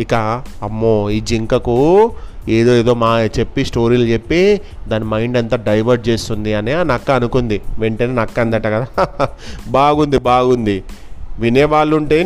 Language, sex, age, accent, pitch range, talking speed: Telugu, male, 30-49, native, 110-160 Hz, 125 wpm